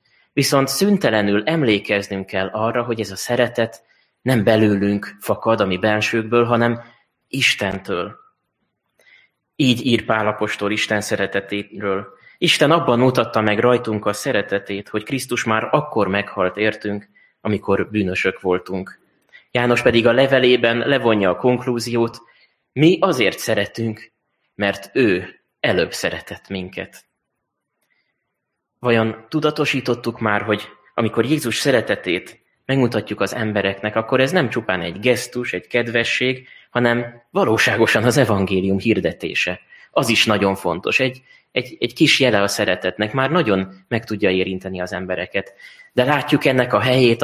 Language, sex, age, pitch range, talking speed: Hungarian, male, 20-39, 100-125 Hz, 125 wpm